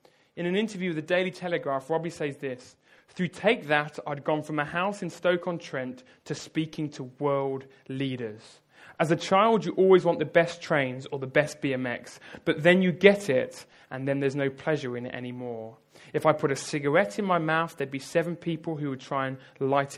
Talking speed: 205 wpm